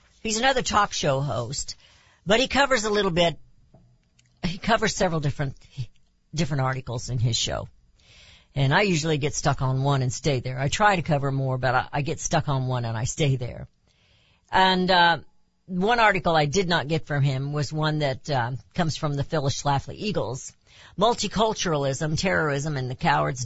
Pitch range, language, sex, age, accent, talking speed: 125-185 Hz, English, female, 50-69, American, 180 wpm